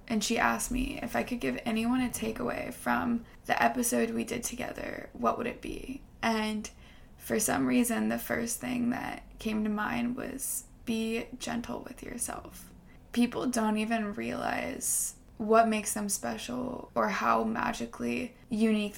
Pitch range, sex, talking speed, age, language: 215-240 Hz, female, 155 wpm, 20-39, English